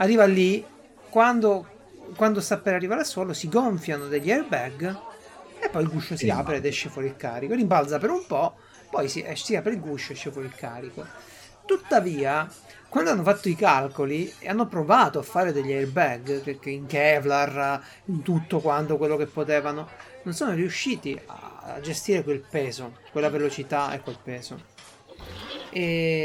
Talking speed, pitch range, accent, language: 165 wpm, 140-185 Hz, native, Italian